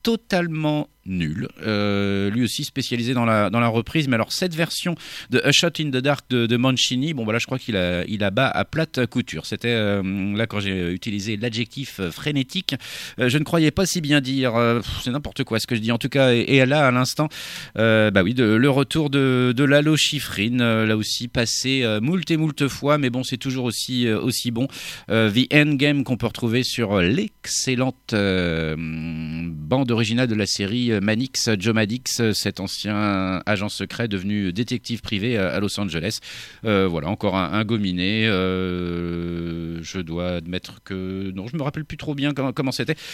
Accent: French